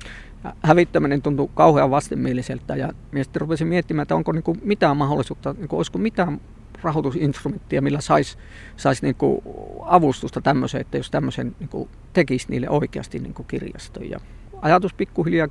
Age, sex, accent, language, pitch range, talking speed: 50-69, male, native, Finnish, 130-165 Hz, 135 wpm